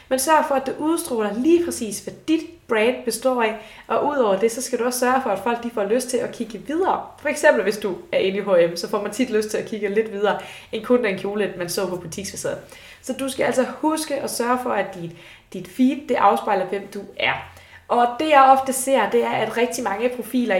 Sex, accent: female, native